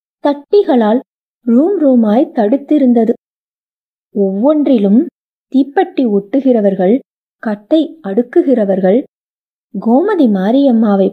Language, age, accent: Tamil, 20-39, native